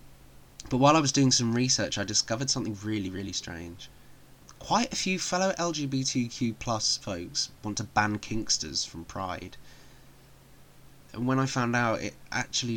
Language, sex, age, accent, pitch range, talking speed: English, male, 20-39, British, 95-130 Hz, 155 wpm